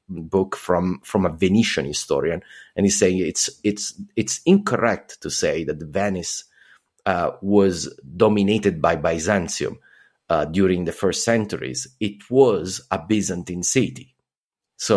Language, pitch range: English, 95-115 Hz